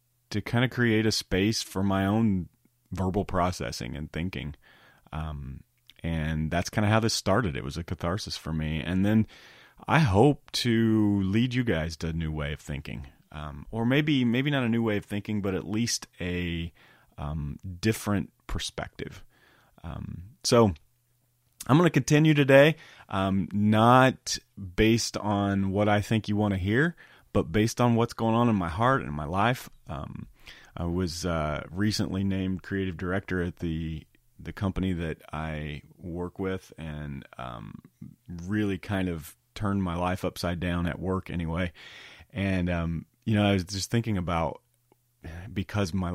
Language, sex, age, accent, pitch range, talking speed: English, male, 30-49, American, 85-110 Hz, 170 wpm